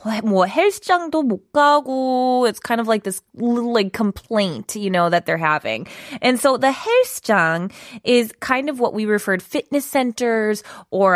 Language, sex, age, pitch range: Korean, female, 20-39, 185-255 Hz